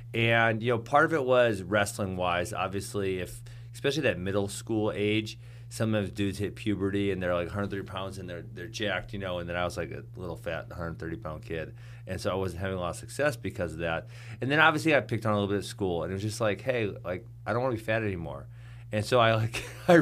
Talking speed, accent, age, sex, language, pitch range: 255 wpm, American, 30-49, male, English, 100-120 Hz